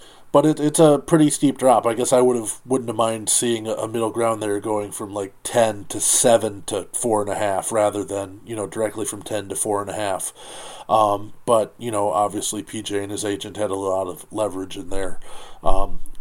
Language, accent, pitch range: English, American, 105-120 Hz